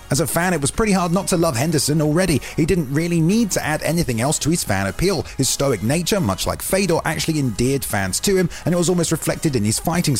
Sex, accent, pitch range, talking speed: male, British, 120-170 Hz, 255 wpm